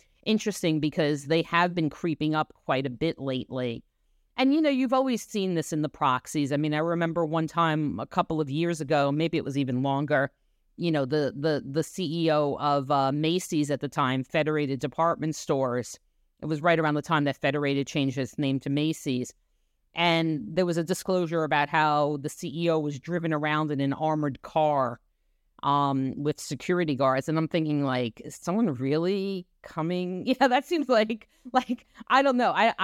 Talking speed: 185 wpm